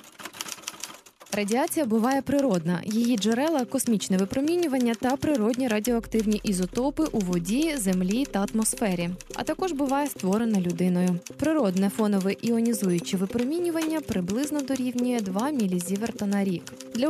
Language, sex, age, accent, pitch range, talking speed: Ukrainian, female, 20-39, native, 190-255 Hz, 110 wpm